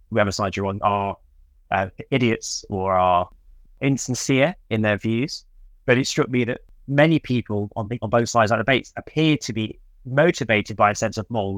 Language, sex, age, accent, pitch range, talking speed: English, male, 20-39, British, 105-130 Hz, 190 wpm